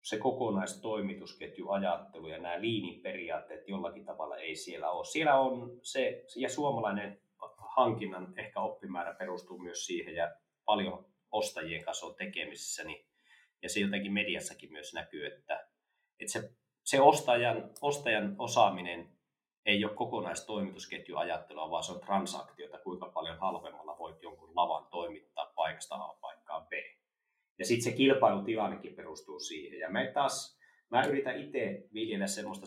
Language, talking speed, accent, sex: Finnish, 125 wpm, native, male